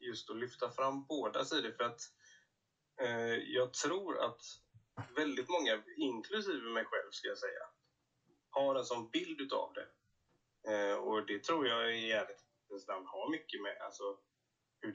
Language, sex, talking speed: Swedish, male, 155 wpm